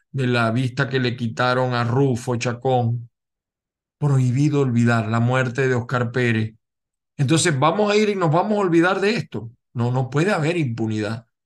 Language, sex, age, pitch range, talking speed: Spanish, male, 50-69, 120-170 Hz, 170 wpm